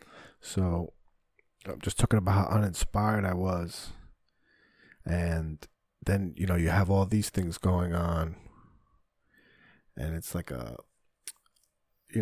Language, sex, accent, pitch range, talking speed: English, male, American, 90-115 Hz, 125 wpm